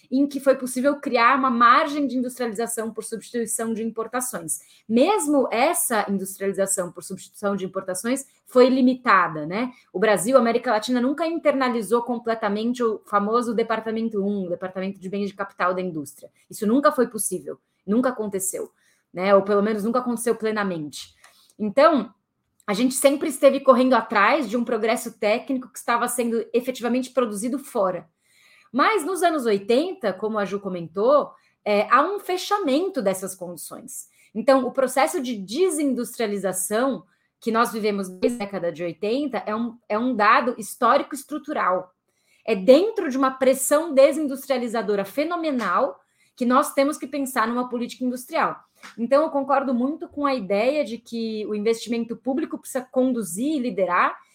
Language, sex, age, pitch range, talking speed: Portuguese, female, 20-39, 210-275 Hz, 150 wpm